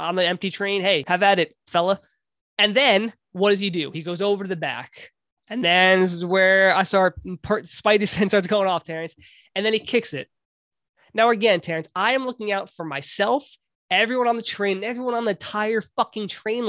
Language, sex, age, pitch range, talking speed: English, male, 20-39, 175-215 Hz, 210 wpm